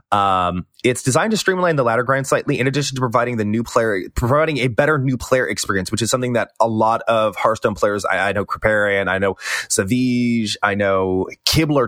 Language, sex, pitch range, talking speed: English, male, 100-135 Hz, 205 wpm